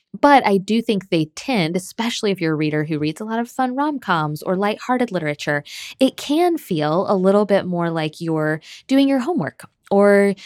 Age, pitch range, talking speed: 20-39, 155-210 Hz, 200 wpm